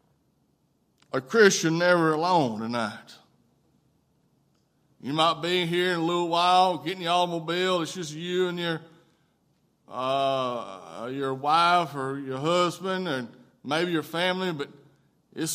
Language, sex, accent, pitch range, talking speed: English, male, American, 145-180 Hz, 125 wpm